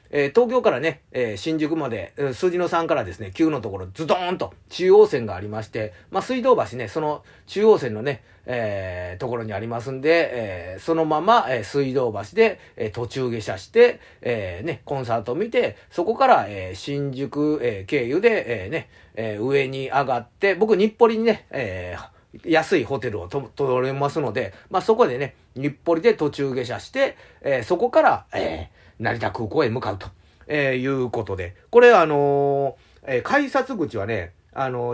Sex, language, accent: male, Japanese, native